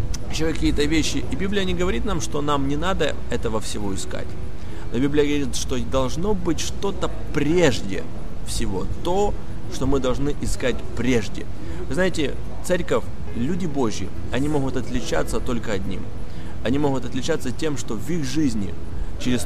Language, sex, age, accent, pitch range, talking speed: Russian, male, 30-49, native, 100-140 Hz, 150 wpm